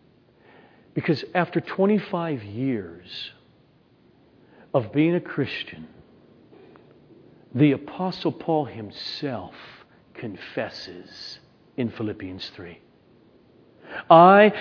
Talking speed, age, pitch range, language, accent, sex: 70 wpm, 50-69, 140-205 Hz, English, American, male